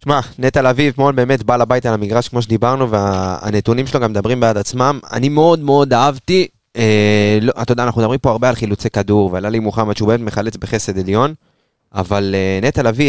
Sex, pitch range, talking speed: male, 105-130 Hz, 200 wpm